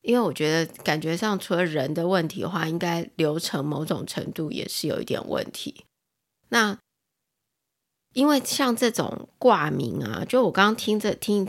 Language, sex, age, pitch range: Chinese, female, 20-39, 165-215 Hz